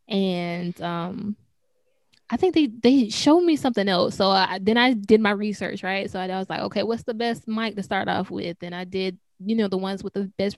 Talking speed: 235 wpm